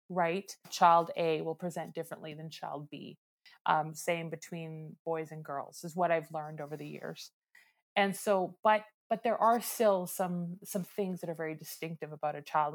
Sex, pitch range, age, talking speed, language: female, 165-200 Hz, 30-49, 185 wpm, English